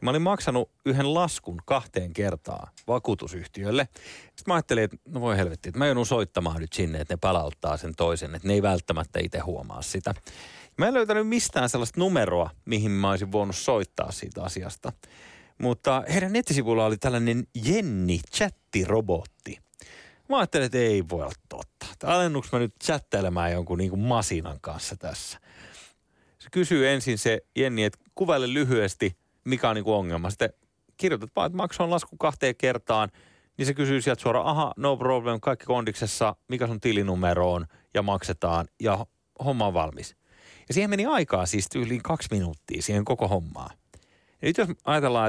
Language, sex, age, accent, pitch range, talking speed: Finnish, male, 30-49, native, 95-130 Hz, 165 wpm